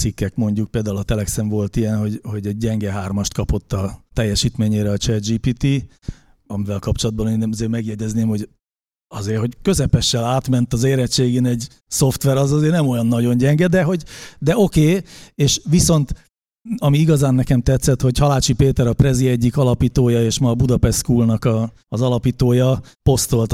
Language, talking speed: Hungarian, 165 wpm